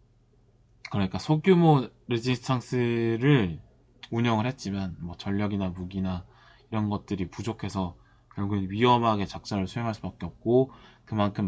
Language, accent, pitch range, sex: Korean, native, 100-125 Hz, male